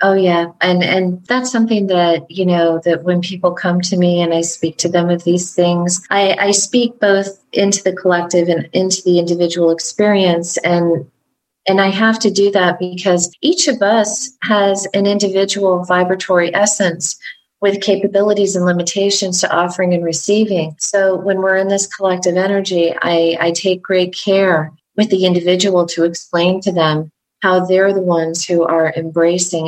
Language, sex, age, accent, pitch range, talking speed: English, female, 30-49, American, 170-195 Hz, 170 wpm